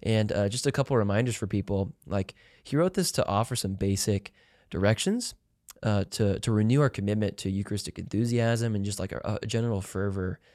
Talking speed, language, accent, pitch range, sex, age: 195 wpm, English, American, 95-115 Hz, male, 20-39